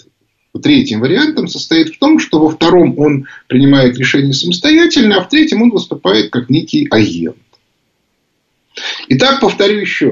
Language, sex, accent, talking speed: Russian, male, native, 135 wpm